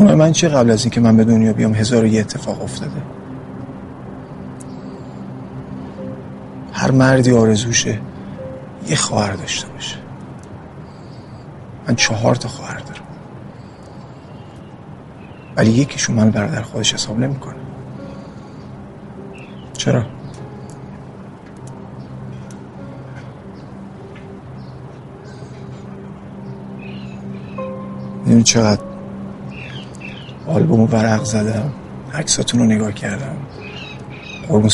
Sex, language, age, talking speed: male, Persian, 50-69, 75 wpm